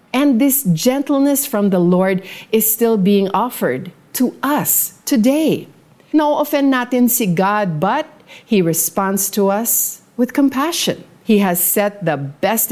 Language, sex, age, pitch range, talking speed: Filipino, female, 40-59, 165-230 Hz, 140 wpm